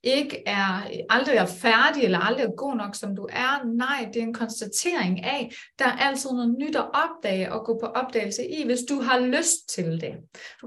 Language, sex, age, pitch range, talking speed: Danish, female, 30-49, 220-260 Hz, 215 wpm